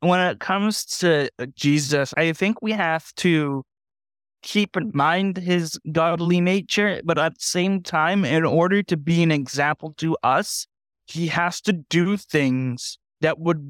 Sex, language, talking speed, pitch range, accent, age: male, English, 160 wpm, 140-175 Hz, American, 20-39